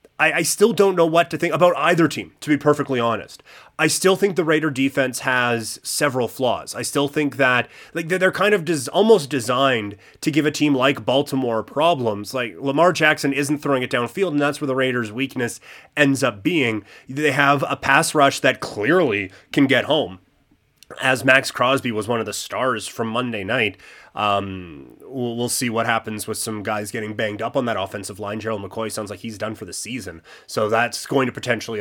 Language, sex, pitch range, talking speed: English, male, 115-150 Hz, 200 wpm